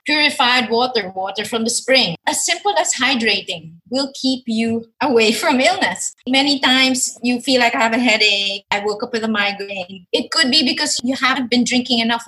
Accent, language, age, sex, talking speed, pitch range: Filipino, English, 20-39, female, 195 wpm, 215-270 Hz